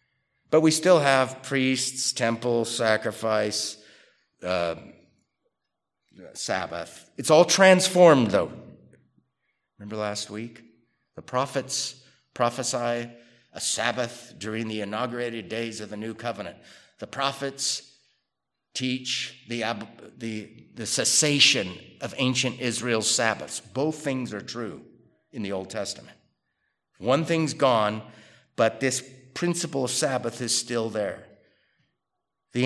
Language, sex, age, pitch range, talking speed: English, male, 50-69, 110-135 Hz, 110 wpm